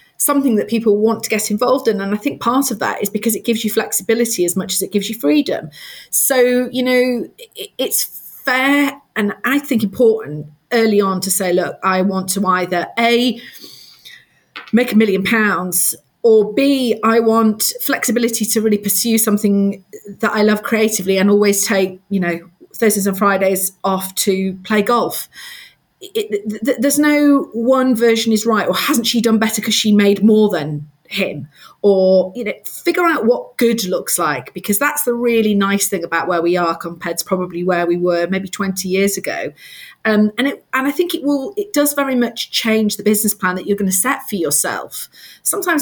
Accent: British